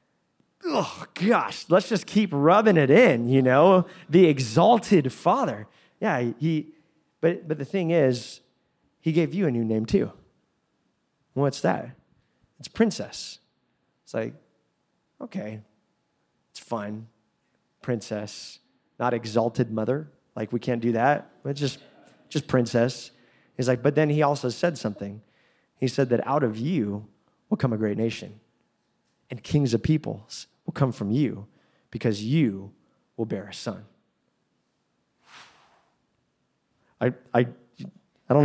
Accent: American